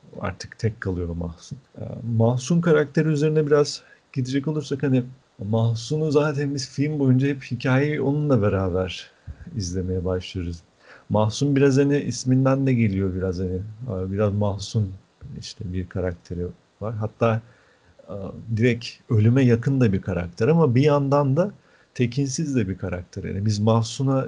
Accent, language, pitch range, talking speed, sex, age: native, Turkish, 100-130 Hz, 135 wpm, male, 40-59